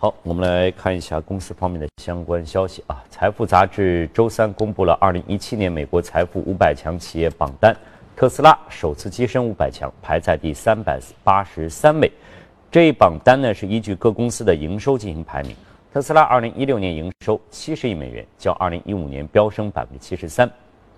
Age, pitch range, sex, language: 50-69, 80-110 Hz, male, Chinese